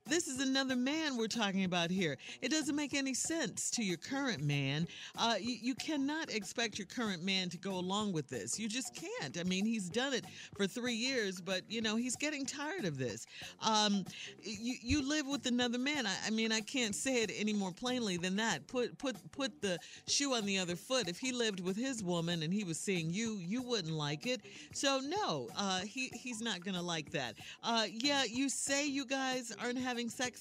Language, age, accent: English, 50-69, American